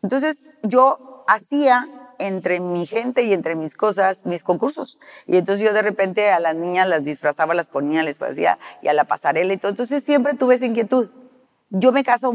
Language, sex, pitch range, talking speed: Spanish, female, 170-240 Hz, 195 wpm